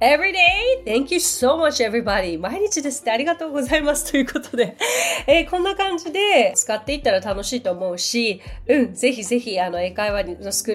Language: Japanese